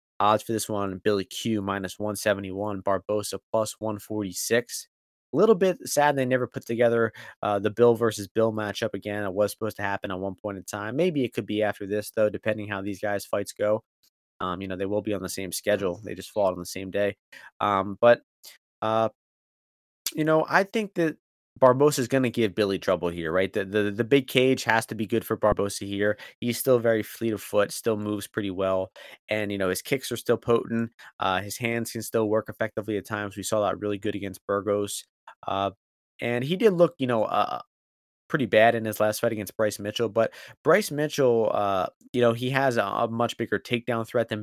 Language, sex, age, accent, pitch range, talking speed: English, male, 20-39, American, 100-120 Hz, 215 wpm